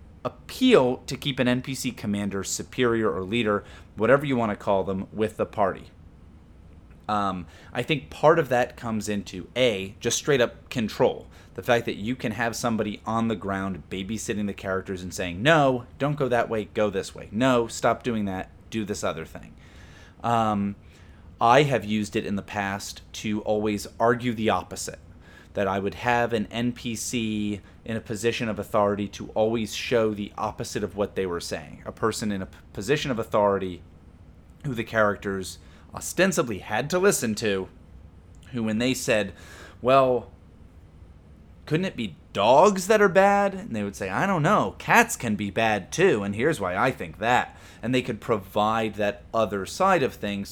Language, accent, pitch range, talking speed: English, American, 90-115 Hz, 180 wpm